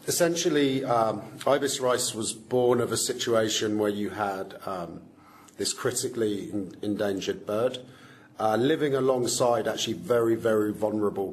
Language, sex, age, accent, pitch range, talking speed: English, male, 40-59, British, 110-135 Hz, 125 wpm